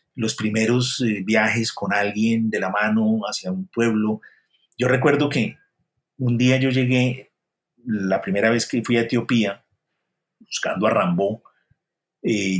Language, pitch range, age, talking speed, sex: Spanish, 110-130 Hz, 40-59, 145 wpm, male